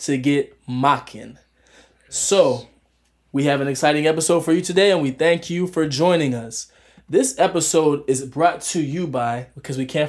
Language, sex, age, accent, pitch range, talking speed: English, male, 20-39, American, 130-160 Hz, 170 wpm